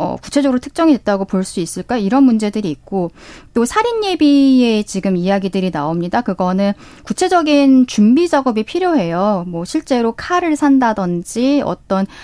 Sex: female